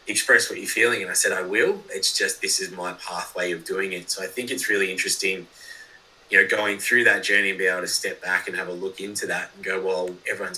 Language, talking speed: English, 260 wpm